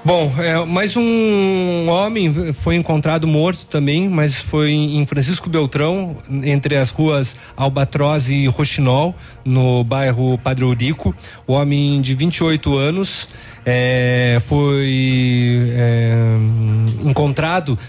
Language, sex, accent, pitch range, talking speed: Portuguese, male, Brazilian, 135-165 Hz, 110 wpm